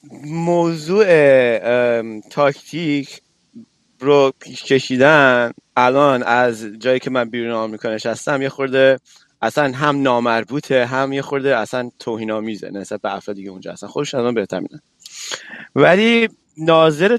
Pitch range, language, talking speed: 115-155 Hz, Persian, 125 wpm